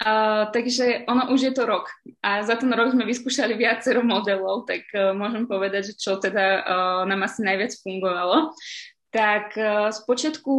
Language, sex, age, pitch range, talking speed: Slovak, female, 20-39, 195-240 Hz, 170 wpm